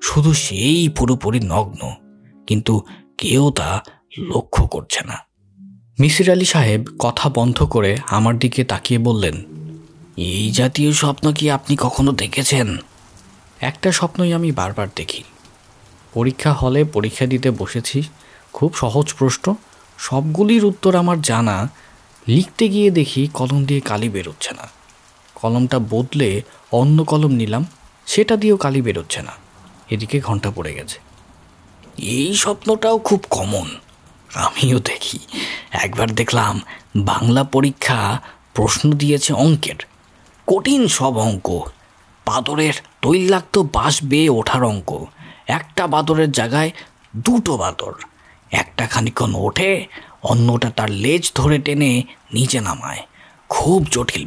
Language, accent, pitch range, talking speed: Bengali, native, 105-150 Hz, 110 wpm